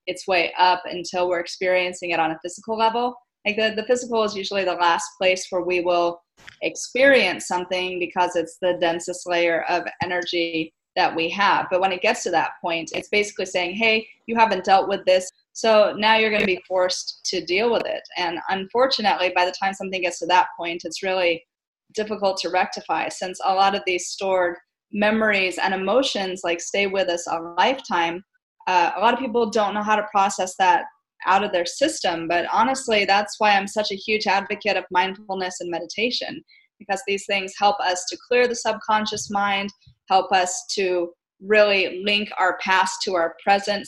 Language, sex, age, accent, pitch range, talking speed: English, female, 30-49, American, 180-215 Hz, 190 wpm